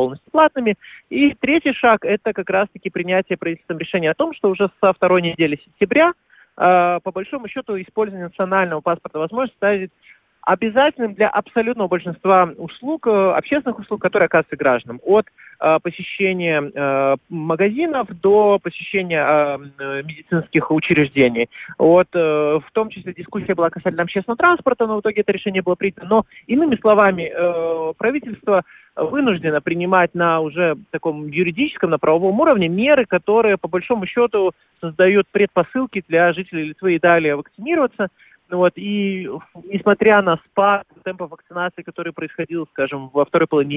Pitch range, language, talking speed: 160-205 Hz, Russian, 145 wpm